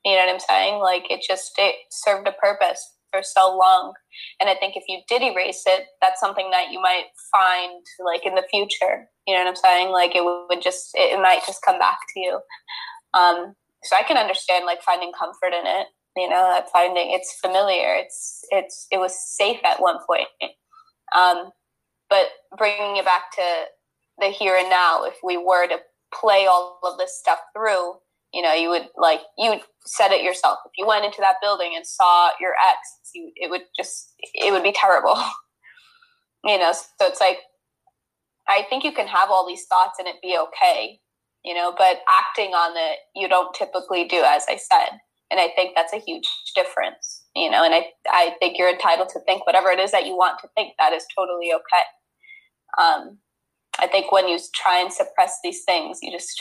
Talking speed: 200 wpm